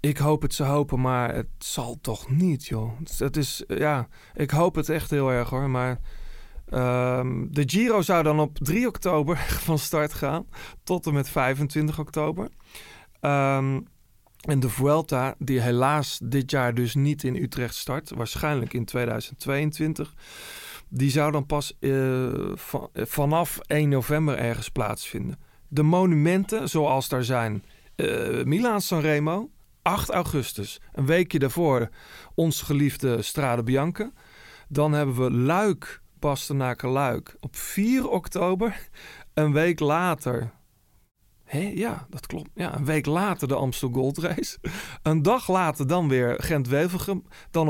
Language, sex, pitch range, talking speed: Dutch, male, 130-155 Hz, 140 wpm